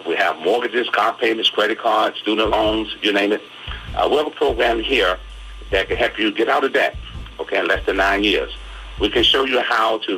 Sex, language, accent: male, English, American